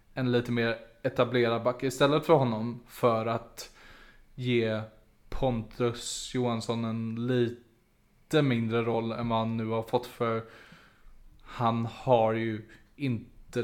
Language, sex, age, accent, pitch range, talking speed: Swedish, male, 20-39, Norwegian, 120-135 Hz, 120 wpm